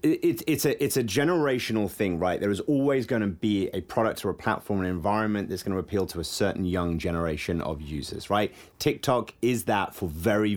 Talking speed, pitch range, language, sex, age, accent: 220 wpm, 95-120 Hz, English, male, 30-49, British